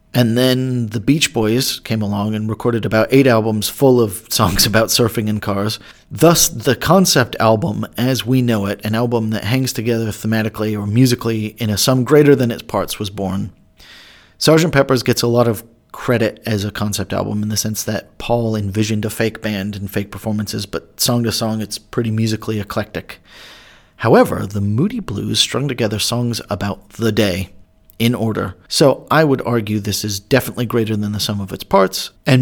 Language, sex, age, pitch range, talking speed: English, male, 40-59, 105-120 Hz, 190 wpm